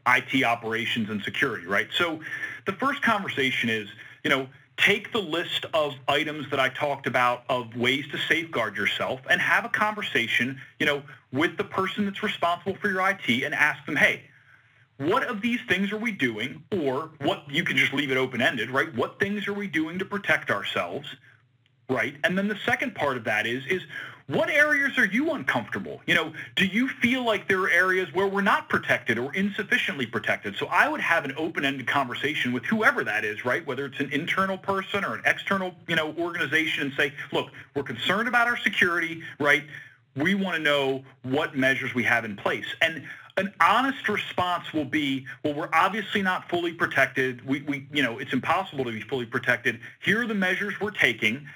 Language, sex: English, male